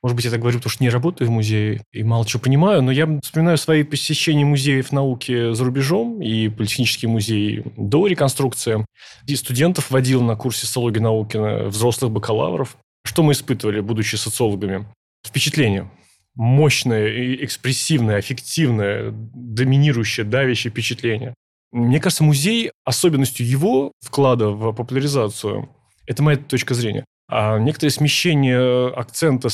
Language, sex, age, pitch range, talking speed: Russian, male, 20-39, 115-145 Hz, 130 wpm